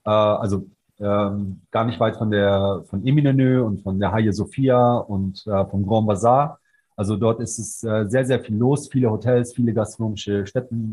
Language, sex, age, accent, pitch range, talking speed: German, male, 30-49, German, 105-125 Hz, 180 wpm